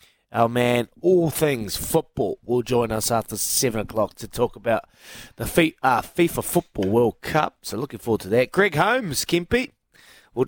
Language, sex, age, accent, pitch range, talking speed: English, male, 20-39, Australian, 105-155 Hz, 160 wpm